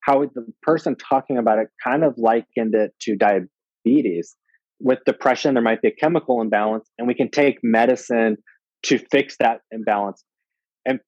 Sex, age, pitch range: male, 20-39, 110-135 Hz